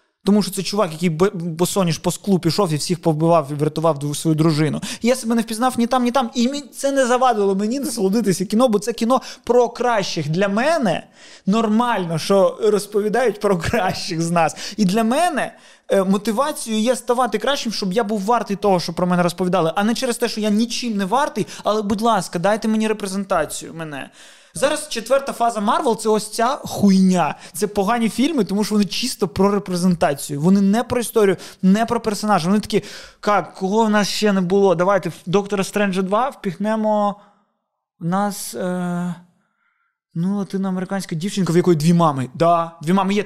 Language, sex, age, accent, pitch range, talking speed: Ukrainian, male, 20-39, native, 175-220 Hz, 185 wpm